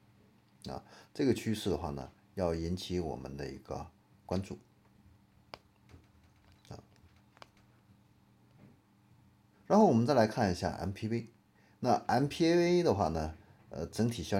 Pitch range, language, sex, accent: 85-110 Hz, Chinese, male, native